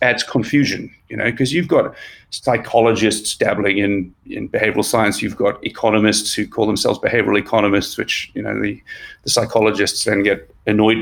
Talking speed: 165 wpm